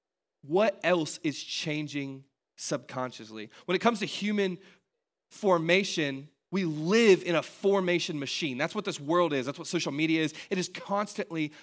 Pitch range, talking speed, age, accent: 155-190 Hz, 155 wpm, 20-39, American